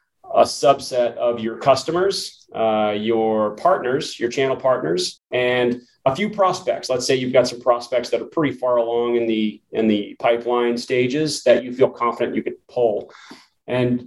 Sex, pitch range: male, 115-135 Hz